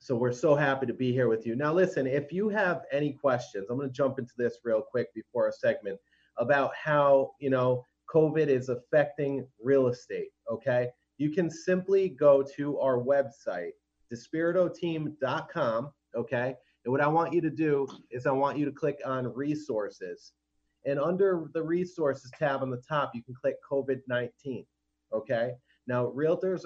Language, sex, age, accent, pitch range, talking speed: English, male, 30-49, American, 125-155 Hz, 170 wpm